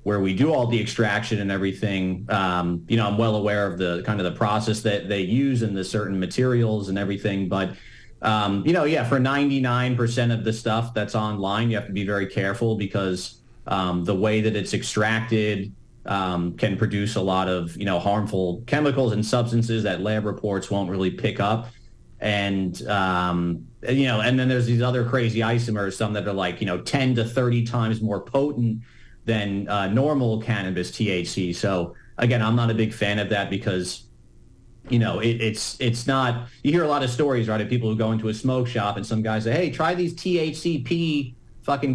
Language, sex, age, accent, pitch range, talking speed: English, male, 30-49, American, 100-120 Hz, 205 wpm